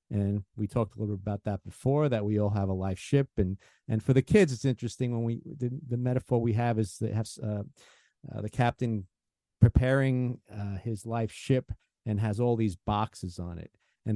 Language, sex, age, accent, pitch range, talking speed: English, male, 50-69, American, 105-125 Hz, 210 wpm